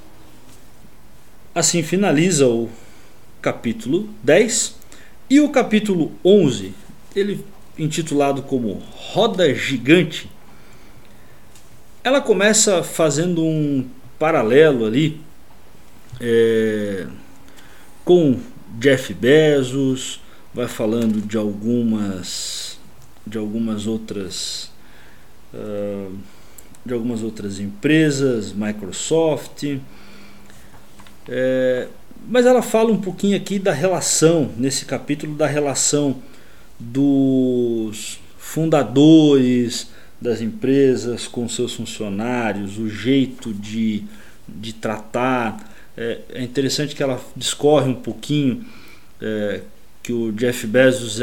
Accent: Brazilian